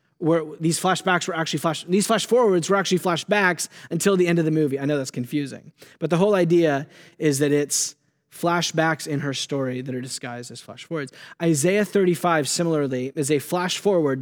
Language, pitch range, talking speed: English, 140-175 Hz, 195 wpm